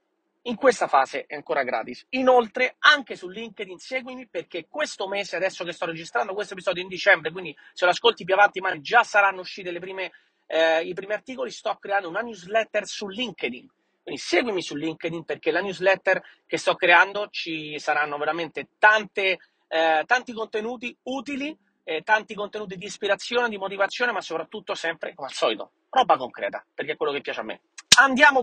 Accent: native